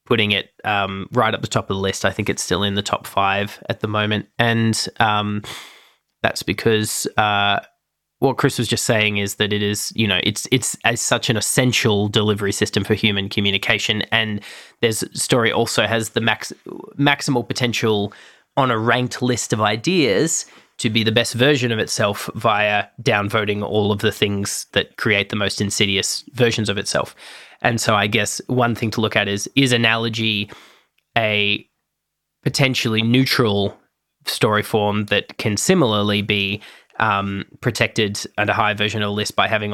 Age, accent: 20-39, Australian